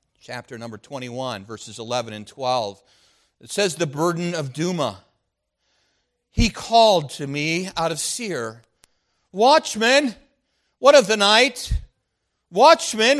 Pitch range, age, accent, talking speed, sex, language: 170-230 Hz, 50-69, American, 120 wpm, male, English